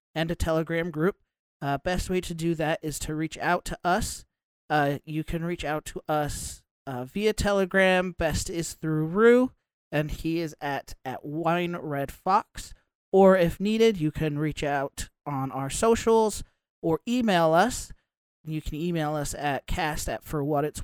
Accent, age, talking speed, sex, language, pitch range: American, 40-59, 175 wpm, male, English, 150-190 Hz